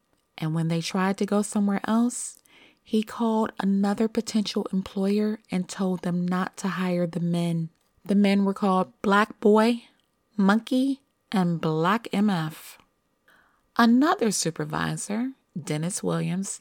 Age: 30-49